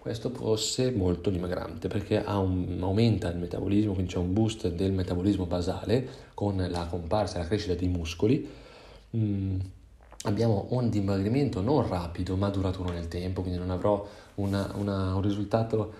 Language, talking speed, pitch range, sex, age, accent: Italian, 160 wpm, 95-110 Hz, male, 30-49, native